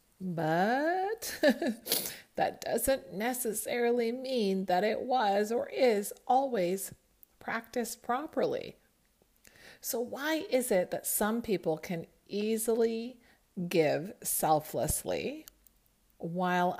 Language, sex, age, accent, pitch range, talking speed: English, female, 40-59, American, 165-225 Hz, 90 wpm